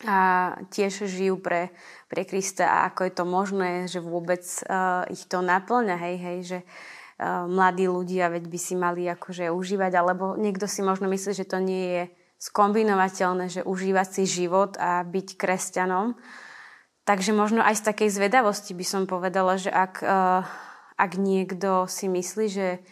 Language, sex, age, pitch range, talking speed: Slovak, female, 20-39, 185-195 Hz, 165 wpm